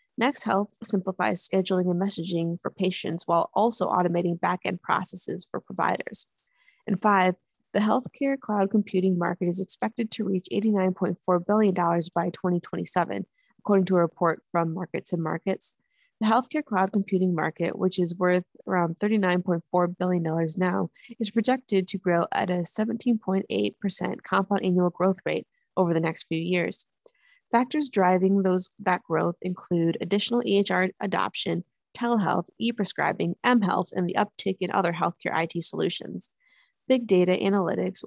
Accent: American